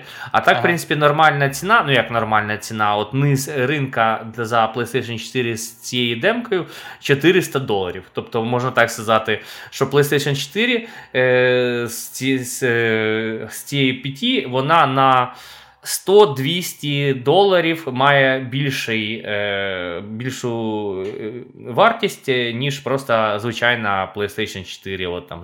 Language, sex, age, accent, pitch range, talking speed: Ukrainian, male, 20-39, native, 110-135 Hz, 110 wpm